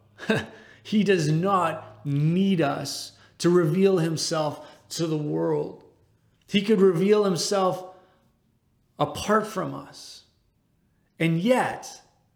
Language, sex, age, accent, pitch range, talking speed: English, male, 30-49, American, 140-180 Hz, 95 wpm